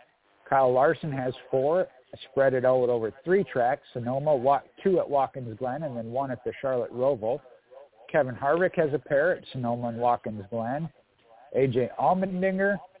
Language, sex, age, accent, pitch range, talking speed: English, male, 50-69, American, 120-150 Hz, 155 wpm